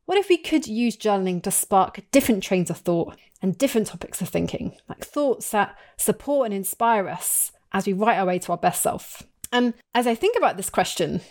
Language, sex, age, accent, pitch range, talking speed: English, female, 30-49, British, 180-230 Hz, 210 wpm